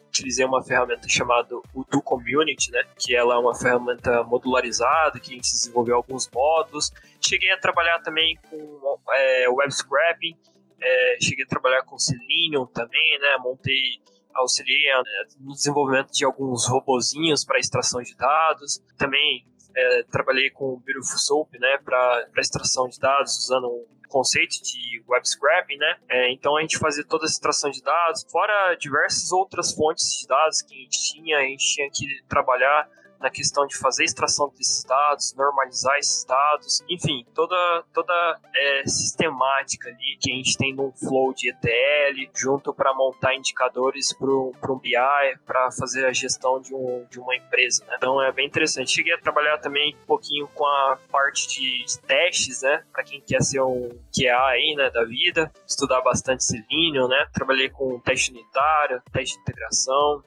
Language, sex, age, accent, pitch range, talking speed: Portuguese, male, 20-39, Brazilian, 130-155 Hz, 170 wpm